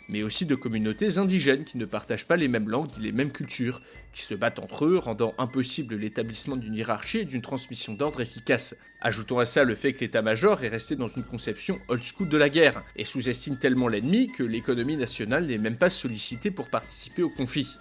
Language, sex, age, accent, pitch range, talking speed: French, male, 30-49, French, 120-175 Hz, 220 wpm